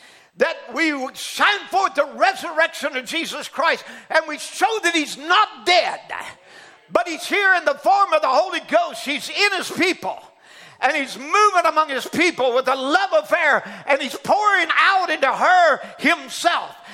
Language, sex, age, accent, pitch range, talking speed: English, male, 50-69, American, 275-345 Hz, 170 wpm